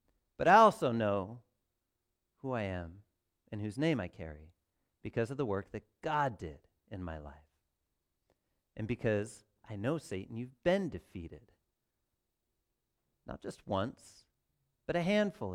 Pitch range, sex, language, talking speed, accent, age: 100-155 Hz, male, English, 140 wpm, American, 40-59